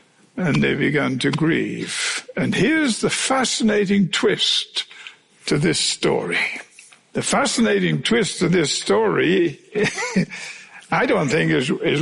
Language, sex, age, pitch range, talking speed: English, male, 60-79, 190-285 Hz, 120 wpm